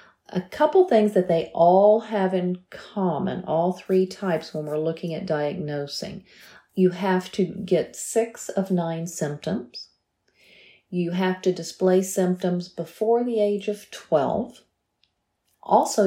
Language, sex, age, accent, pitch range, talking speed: English, female, 40-59, American, 165-205 Hz, 135 wpm